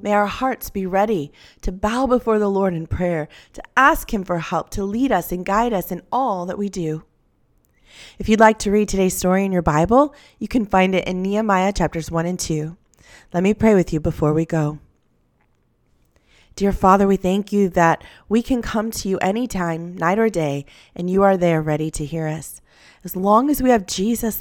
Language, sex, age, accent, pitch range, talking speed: English, female, 20-39, American, 170-220 Hz, 210 wpm